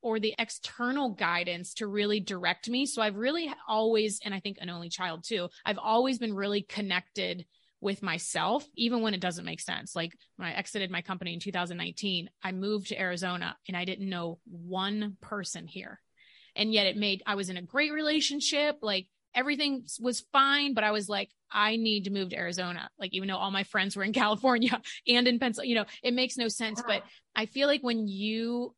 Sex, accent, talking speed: female, American, 205 wpm